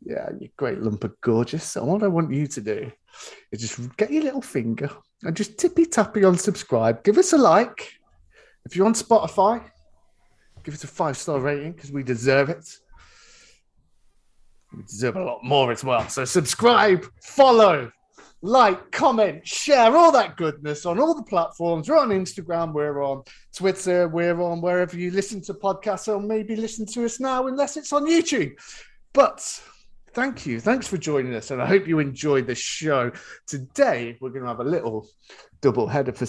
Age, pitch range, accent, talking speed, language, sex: 30-49, 130-200 Hz, British, 180 wpm, English, male